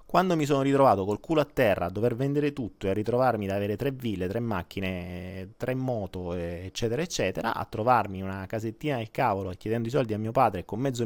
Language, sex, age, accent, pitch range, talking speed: Italian, male, 30-49, native, 95-130 Hz, 210 wpm